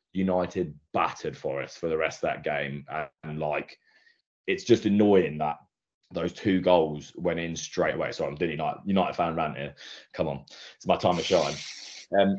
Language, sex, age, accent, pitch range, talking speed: English, male, 20-39, British, 85-95 Hz, 190 wpm